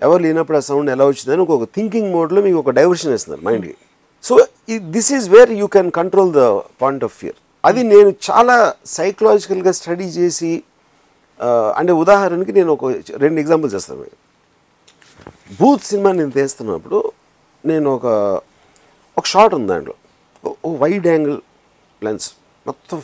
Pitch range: 140-205 Hz